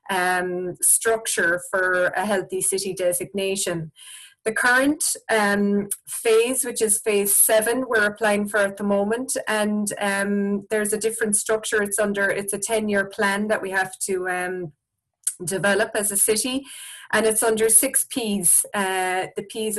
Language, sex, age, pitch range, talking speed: English, female, 20-39, 190-225 Hz, 150 wpm